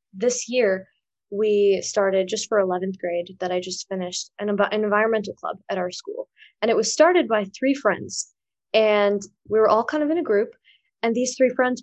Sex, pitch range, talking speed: female, 195-245 Hz, 200 wpm